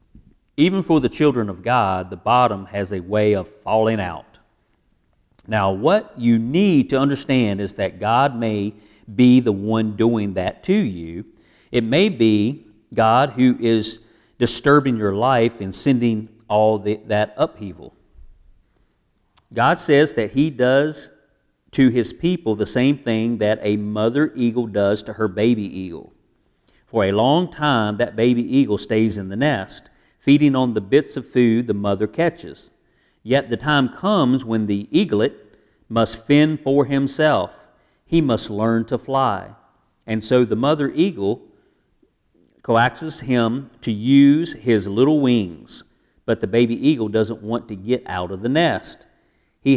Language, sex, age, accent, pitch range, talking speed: English, male, 50-69, American, 105-135 Hz, 150 wpm